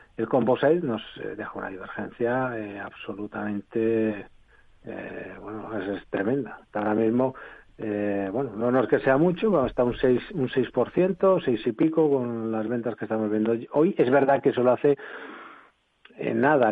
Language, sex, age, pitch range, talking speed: Spanish, male, 40-59, 115-145 Hz, 165 wpm